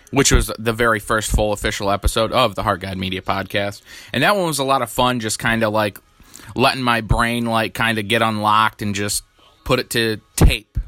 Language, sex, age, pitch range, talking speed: English, male, 20-39, 105-125 Hz, 220 wpm